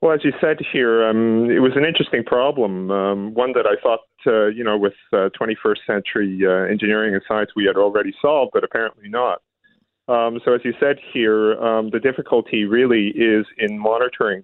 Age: 40-59